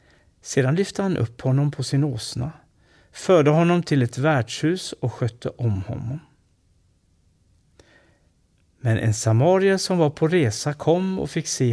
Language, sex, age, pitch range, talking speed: Swedish, male, 60-79, 115-155 Hz, 145 wpm